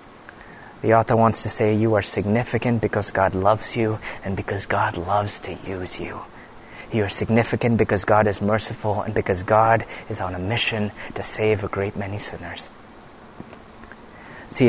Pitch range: 105-115 Hz